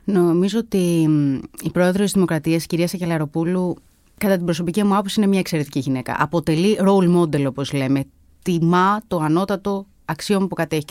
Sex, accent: female, native